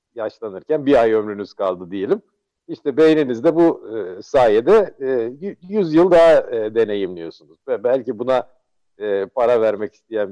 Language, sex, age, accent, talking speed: Turkish, male, 60-79, native, 110 wpm